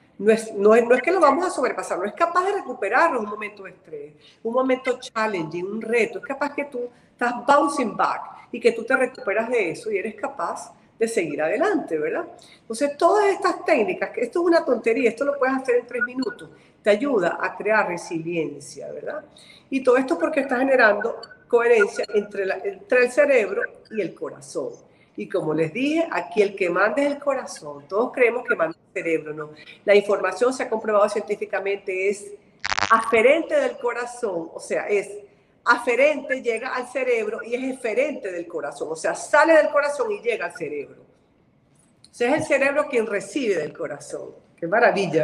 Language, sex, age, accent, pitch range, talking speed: Spanish, female, 40-59, American, 205-310 Hz, 190 wpm